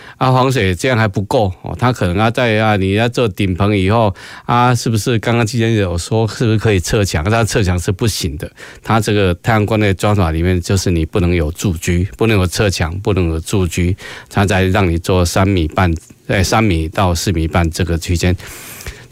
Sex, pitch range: male, 95-120 Hz